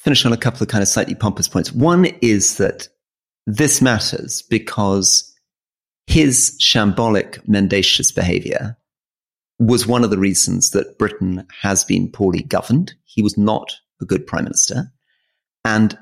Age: 30-49